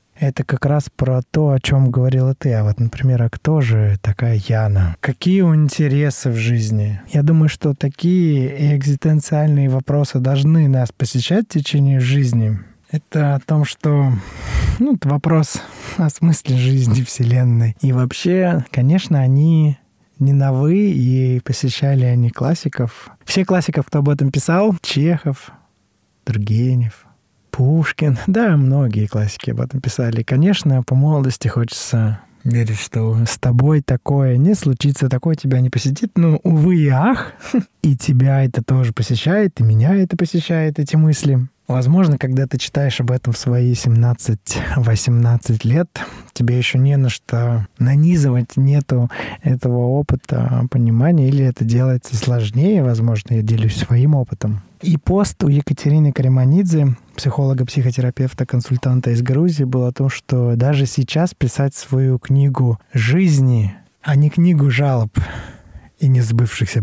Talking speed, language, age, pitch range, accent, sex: 135 wpm, Russian, 20-39, 120-150 Hz, native, male